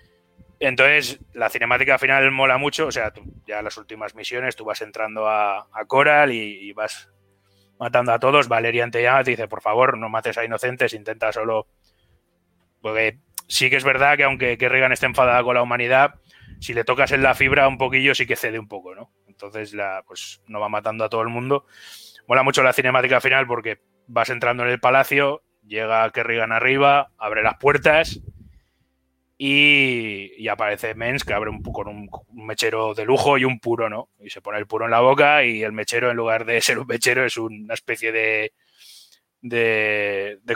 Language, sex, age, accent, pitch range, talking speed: Spanish, male, 20-39, Spanish, 110-130 Hz, 195 wpm